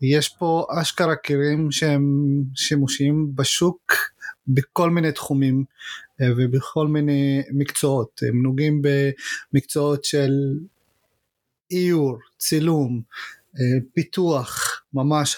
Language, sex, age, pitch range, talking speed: Hebrew, male, 30-49, 135-170 Hz, 80 wpm